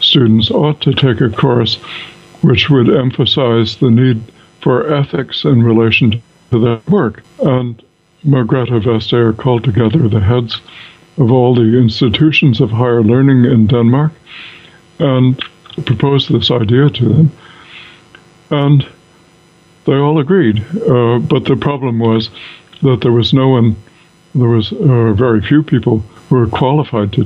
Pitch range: 115-145 Hz